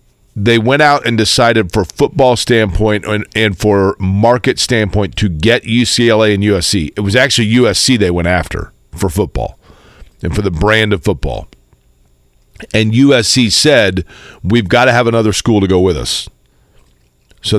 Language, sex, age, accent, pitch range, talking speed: English, male, 40-59, American, 100-120 Hz, 160 wpm